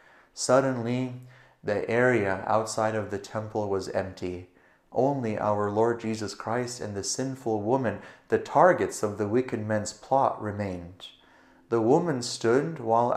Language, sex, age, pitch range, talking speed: English, male, 30-49, 105-130 Hz, 135 wpm